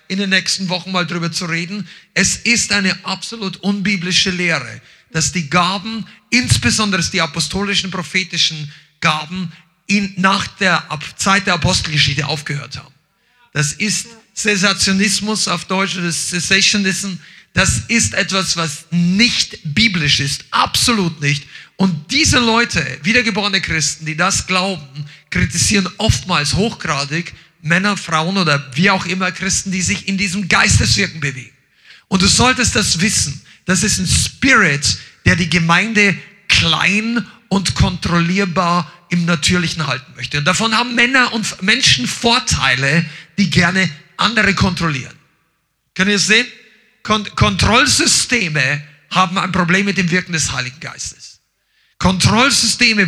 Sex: male